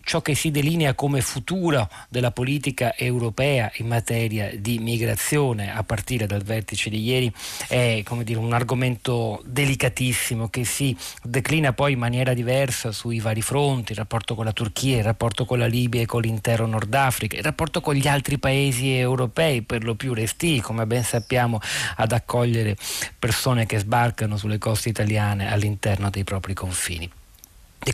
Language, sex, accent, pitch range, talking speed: Italian, male, native, 110-135 Hz, 165 wpm